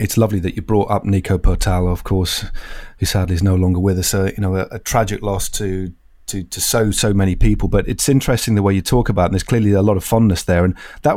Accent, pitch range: British, 100-115 Hz